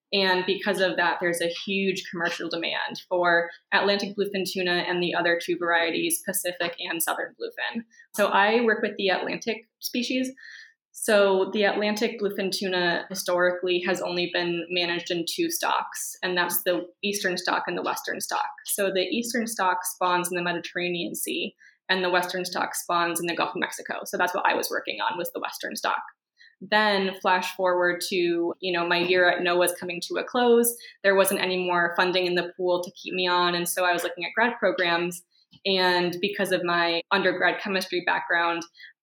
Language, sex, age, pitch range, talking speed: English, female, 20-39, 175-200 Hz, 190 wpm